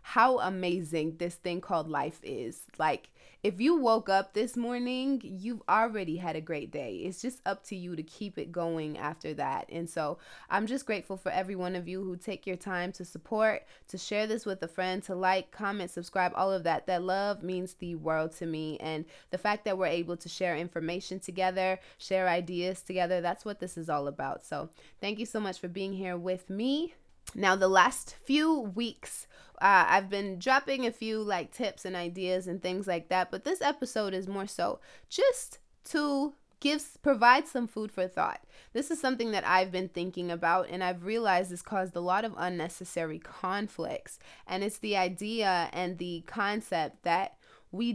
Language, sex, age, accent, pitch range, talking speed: English, female, 20-39, American, 175-215 Hz, 195 wpm